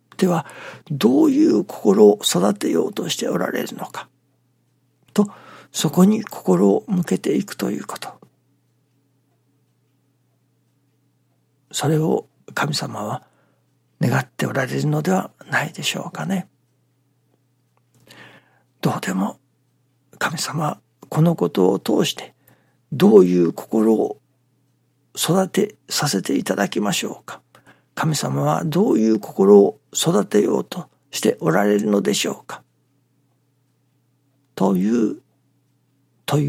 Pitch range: 130-160 Hz